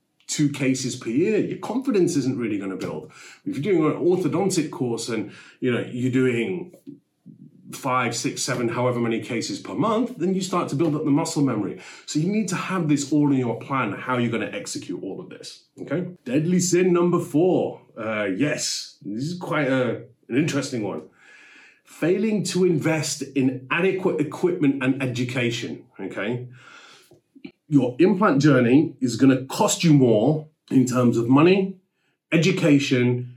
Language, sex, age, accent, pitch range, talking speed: English, male, 30-49, British, 125-165 Hz, 165 wpm